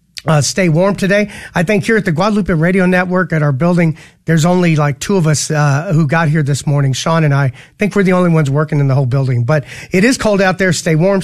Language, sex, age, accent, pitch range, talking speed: English, male, 40-59, American, 155-195 Hz, 260 wpm